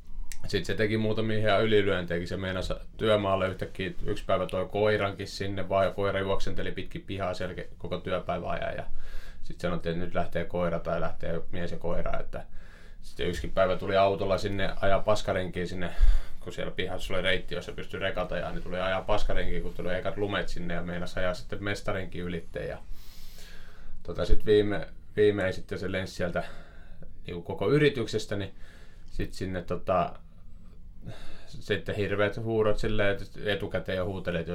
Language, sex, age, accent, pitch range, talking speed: Finnish, male, 20-39, native, 85-100 Hz, 150 wpm